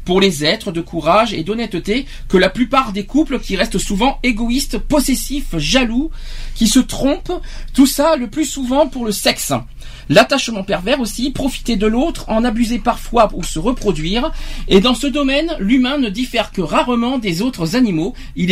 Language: French